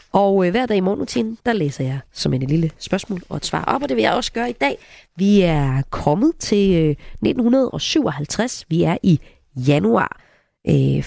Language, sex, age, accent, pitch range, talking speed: Danish, female, 30-49, native, 160-230 Hz, 185 wpm